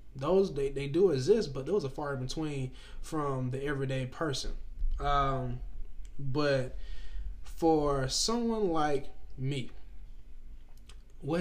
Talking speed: 115 wpm